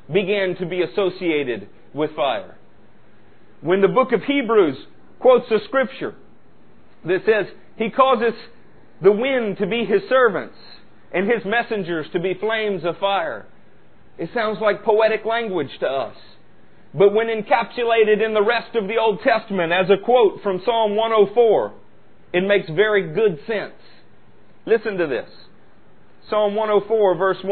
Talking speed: 145 wpm